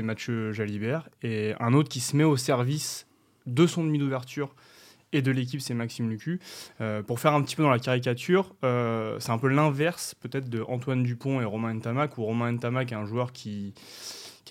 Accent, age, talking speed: French, 20-39, 205 wpm